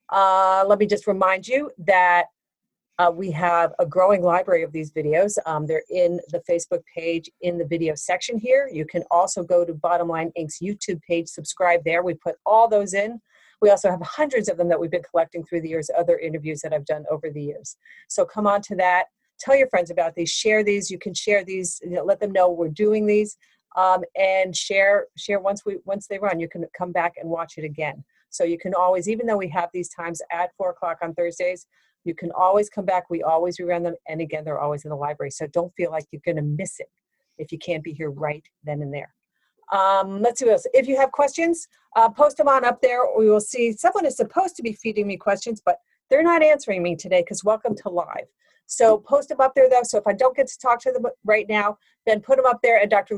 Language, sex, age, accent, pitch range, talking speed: English, female, 40-59, American, 170-215 Hz, 240 wpm